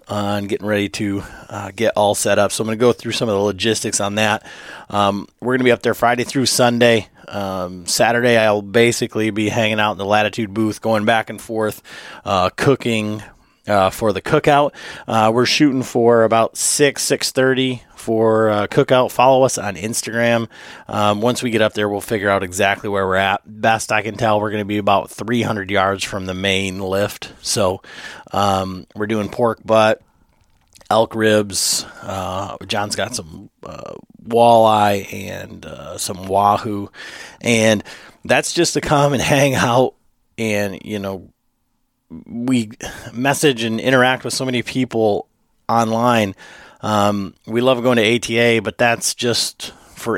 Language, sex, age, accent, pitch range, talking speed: English, male, 30-49, American, 105-120 Hz, 170 wpm